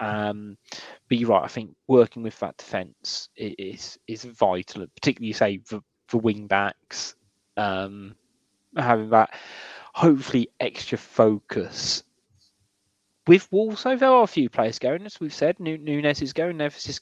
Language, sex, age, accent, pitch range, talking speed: English, male, 20-39, British, 105-145 Hz, 140 wpm